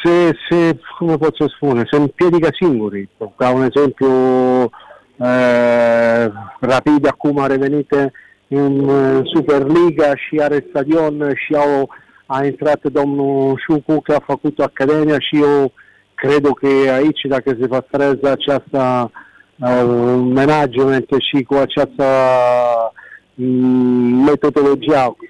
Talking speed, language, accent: 95 wpm, Romanian, Italian